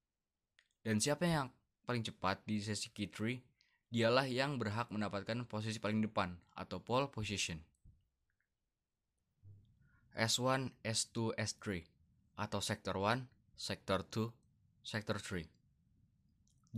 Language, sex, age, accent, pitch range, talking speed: Indonesian, male, 20-39, native, 100-115 Hz, 105 wpm